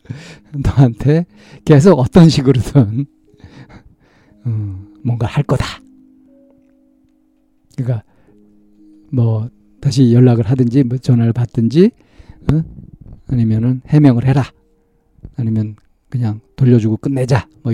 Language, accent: Korean, native